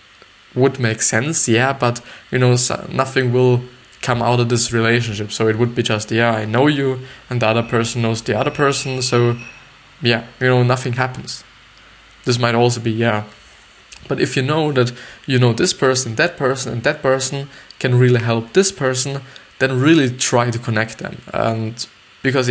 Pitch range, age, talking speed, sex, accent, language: 115-130 Hz, 20-39, 185 wpm, male, German, English